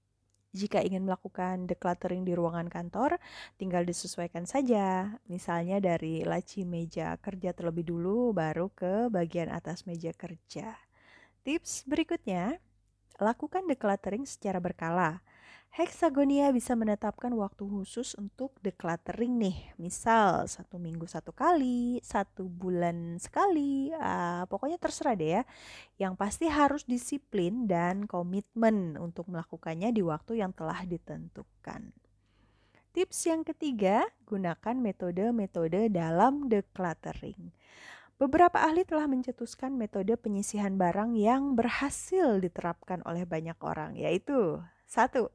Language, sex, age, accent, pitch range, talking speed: Indonesian, female, 20-39, native, 175-245 Hz, 110 wpm